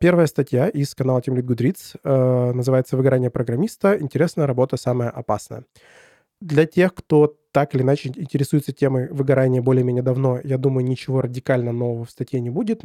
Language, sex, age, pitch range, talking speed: Russian, male, 20-39, 125-150 Hz, 155 wpm